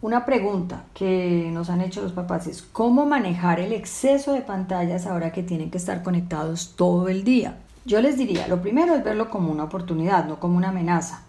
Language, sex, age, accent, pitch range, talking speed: Spanish, female, 40-59, Colombian, 170-220 Hz, 200 wpm